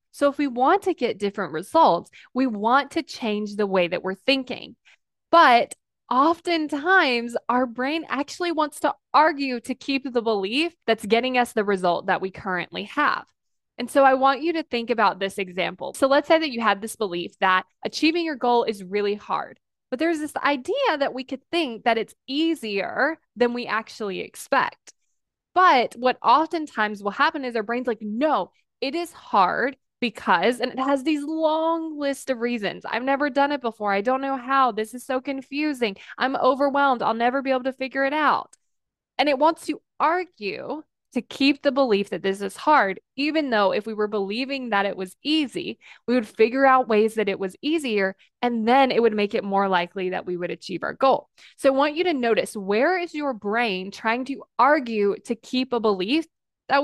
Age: 20-39